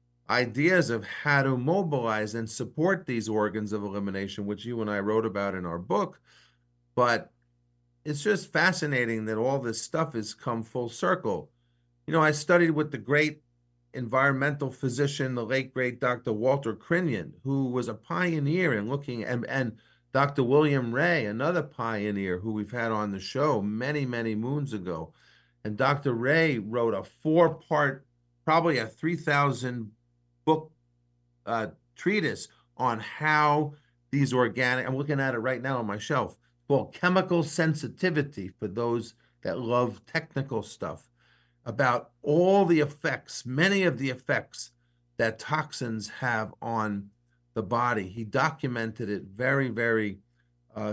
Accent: American